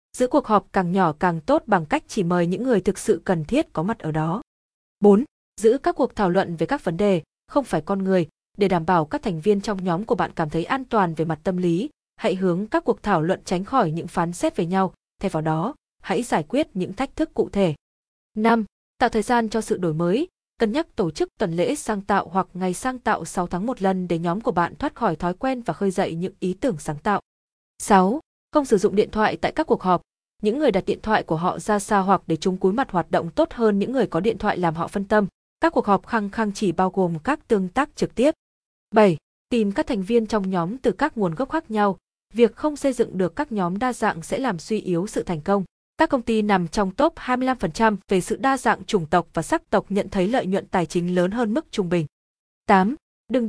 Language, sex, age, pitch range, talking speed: Vietnamese, female, 20-39, 180-235 Hz, 250 wpm